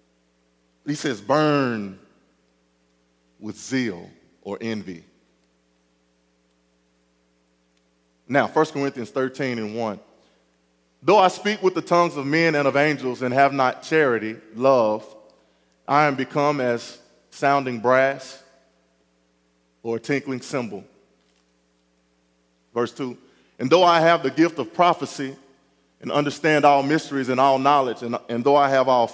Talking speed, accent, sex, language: 130 wpm, American, male, English